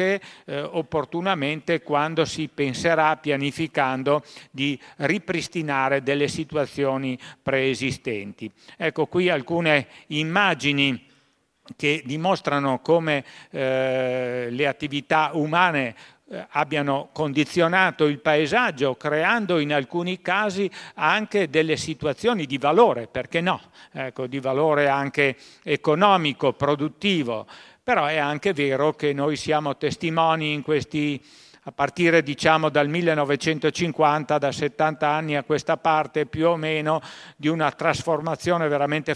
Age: 50-69